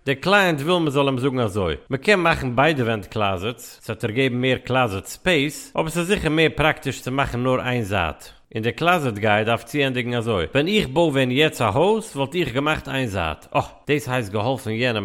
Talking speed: 195 wpm